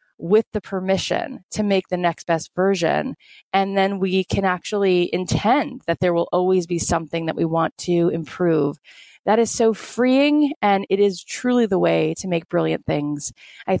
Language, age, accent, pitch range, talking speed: English, 30-49, American, 155-190 Hz, 180 wpm